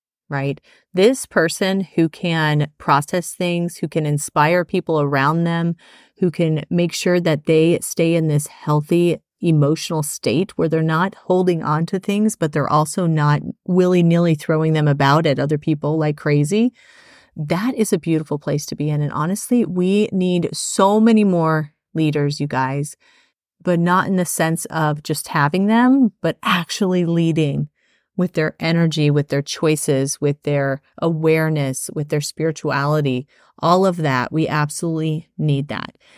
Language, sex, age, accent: English, female, 30-49, American